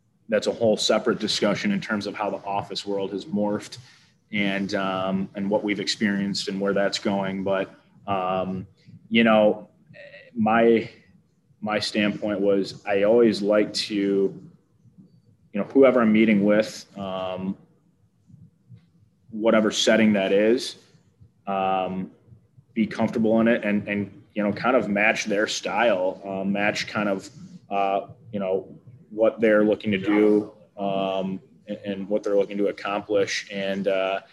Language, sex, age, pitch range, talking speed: English, male, 20-39, 95-110 Hz, 145 wpm